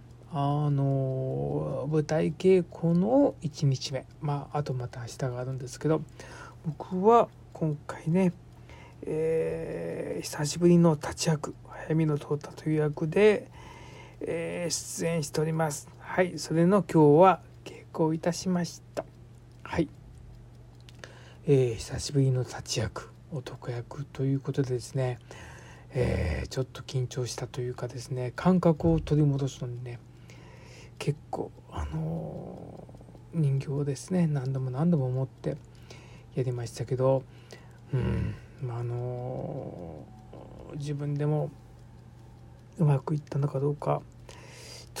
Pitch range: 125-155 Hz